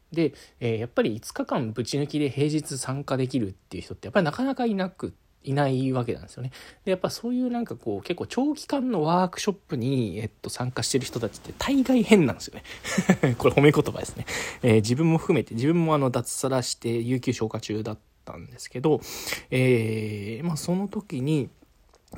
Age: 20-39